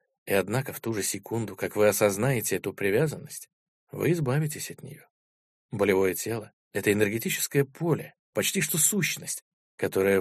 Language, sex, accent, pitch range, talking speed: Russian, male, native, 100-140 Hz, 140 wpm